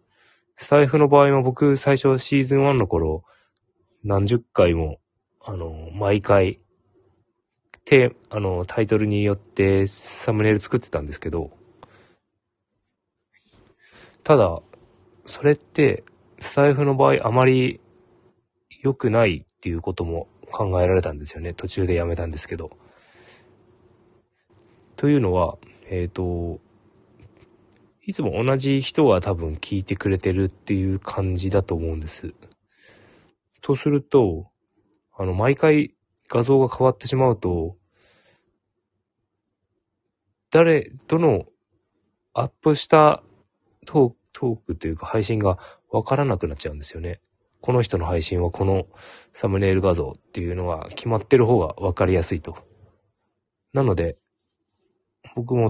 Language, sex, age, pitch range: Japanese, male, 20-39, 95-125 Hz